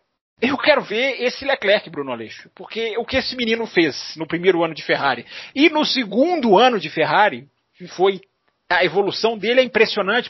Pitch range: 175-245 Hz